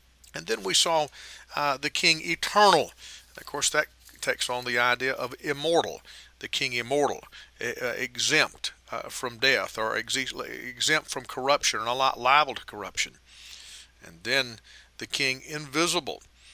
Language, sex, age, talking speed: English, male, 40-59, 155 wpm